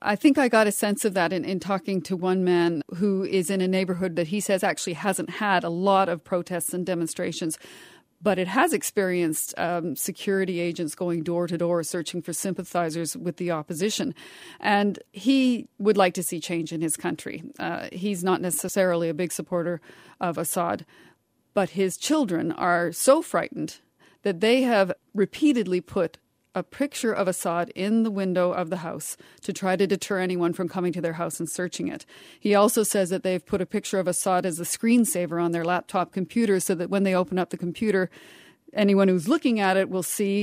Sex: female